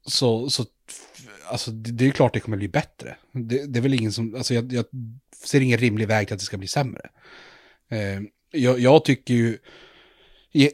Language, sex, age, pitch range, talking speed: Swedish, male, 30-49, 105-130 Hz, 195 wpm